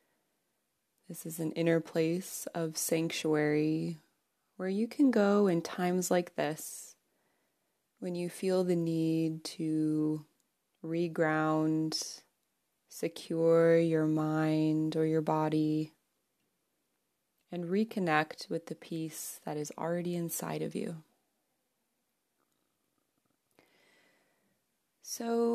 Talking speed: 95 wpm